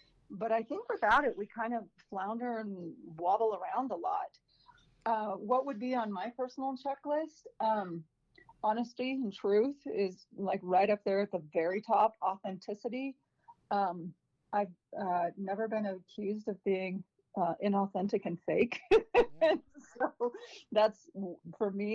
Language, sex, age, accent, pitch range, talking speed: English, female, 40-59, American, 185-230 Hz, 145 wpm